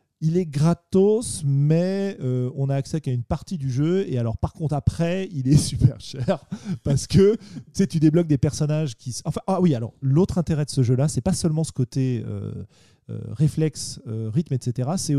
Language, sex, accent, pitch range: French, male, French, 125-165 Hz